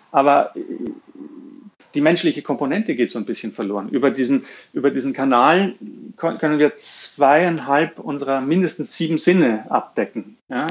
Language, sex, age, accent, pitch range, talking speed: German, male, 40-59, German, 135-180 Hz, 130 wpm